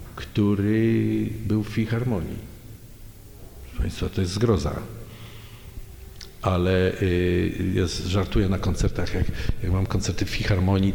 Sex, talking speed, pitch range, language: male, 105 wpm, 95-115 Hz, Polish